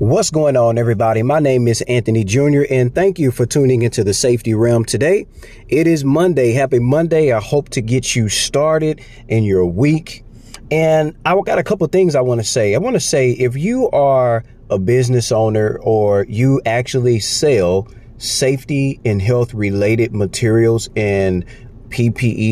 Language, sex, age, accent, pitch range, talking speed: English, male, 30-49, American, 100-130 Hz, 170 wpm